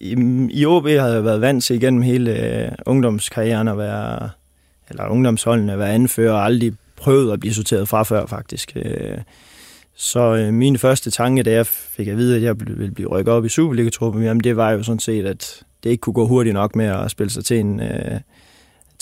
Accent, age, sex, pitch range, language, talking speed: native, 20-39, male, 105-125 Hz, Danish, 205 wpm